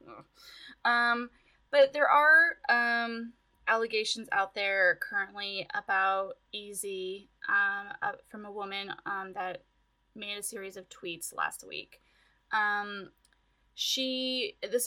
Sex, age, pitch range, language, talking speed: female, 10-29, 195-255 Hz, English, 115 wpm